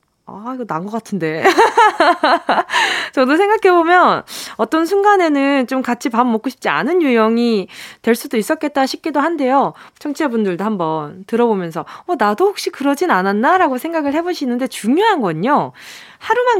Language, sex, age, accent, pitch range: Korean, female, 20-39, native, 220-335 Hz